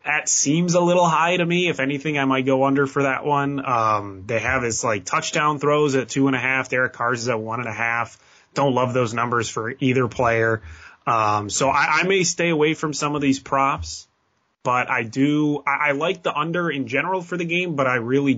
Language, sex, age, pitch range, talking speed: English, male, 20-39, 115-150 Hz, 200 wpm